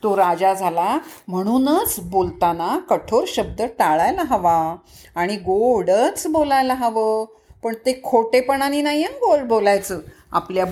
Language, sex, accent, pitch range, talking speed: Marathi, female, native, 195-290 Hz, 110 wpm